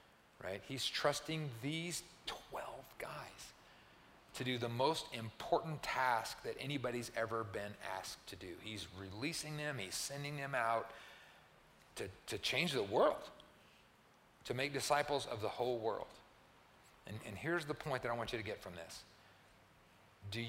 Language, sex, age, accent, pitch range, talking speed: English, male, 40-59, American, 105-140 Hz, 150 wpm